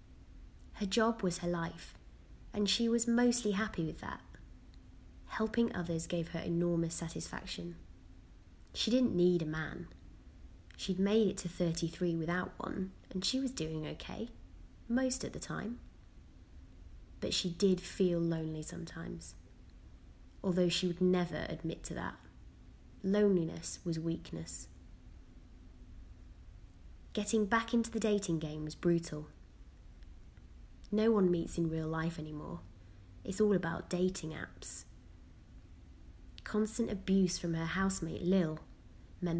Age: 20-39